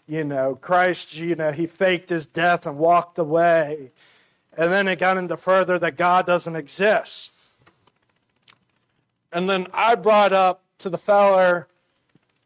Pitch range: 165-190 Hz